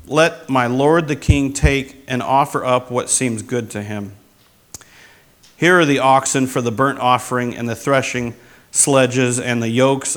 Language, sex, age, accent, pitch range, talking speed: English, male, 50-69, American, 115-140 Hz, 170 wpm